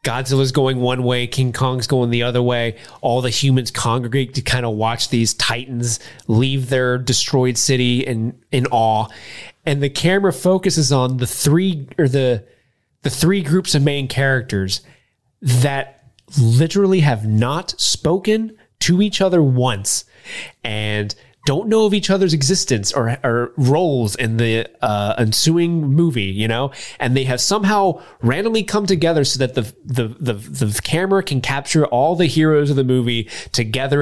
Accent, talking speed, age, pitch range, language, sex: American, 160 wpm, 20-39, 125-175 Hz, English, male